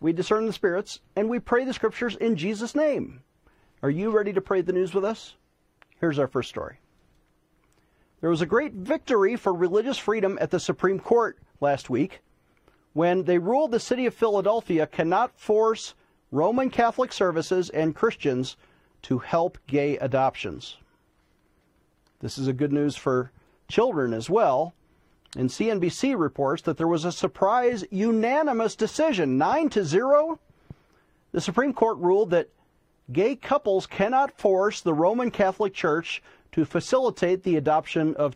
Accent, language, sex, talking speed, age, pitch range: American, English, male, 150 wpm, 40-59, 160-225 Hz